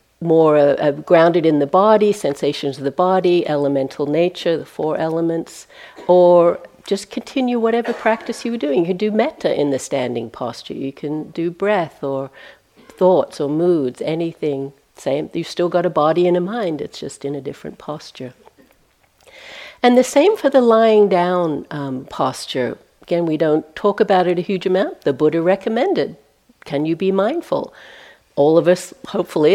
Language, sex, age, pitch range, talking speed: English, female, 60-79, 160-210 Hz, 170 wpm